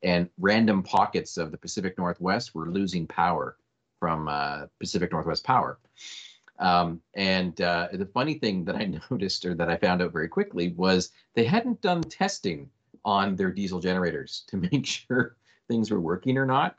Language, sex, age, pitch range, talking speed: English, male, 40-59, 90-110 Hz, 170 wpm